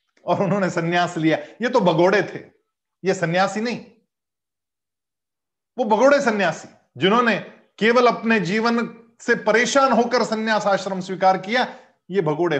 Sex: male